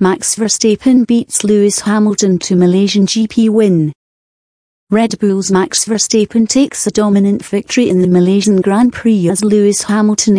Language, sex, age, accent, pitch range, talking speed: English, female, 40-59, British, 180-215 Hz, 145 wpm